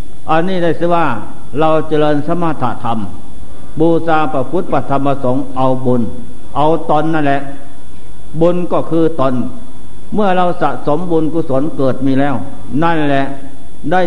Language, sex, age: Thai, male, 60-79